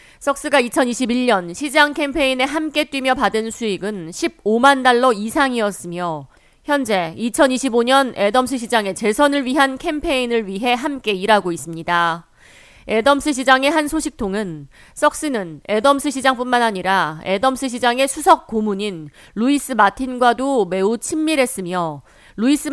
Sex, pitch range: female, 195-275 Hz